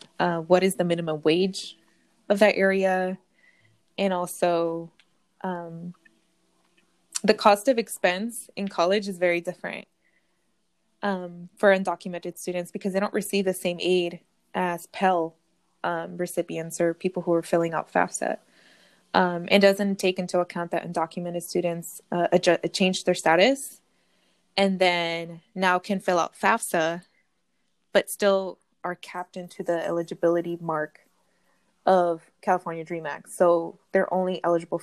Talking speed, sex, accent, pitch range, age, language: 135 wpm, female, American, 170-195 Hz, 20-39, English